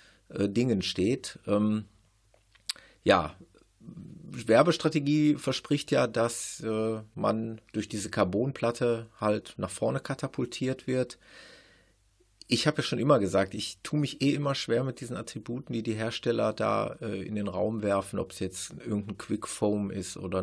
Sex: male